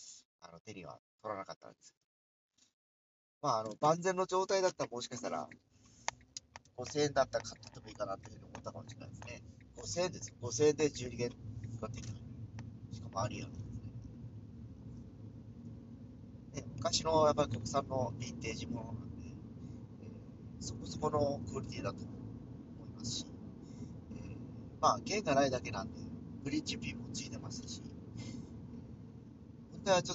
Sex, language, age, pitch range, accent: male, Japanese, 40-59, 115-130 Hz, native